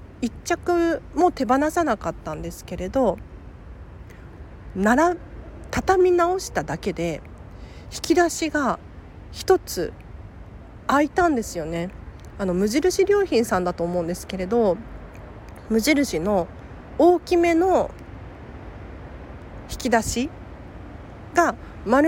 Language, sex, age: Japanese, female, 40-59